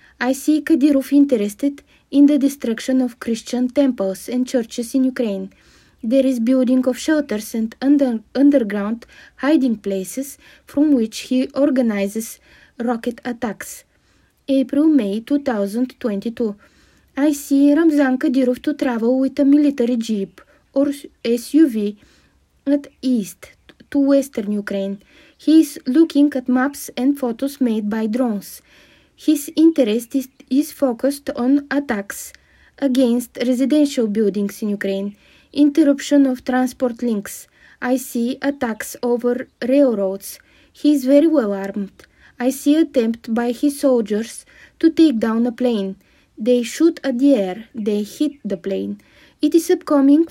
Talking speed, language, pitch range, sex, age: 125 wpm, English, 230-285 Hz, female, 20-39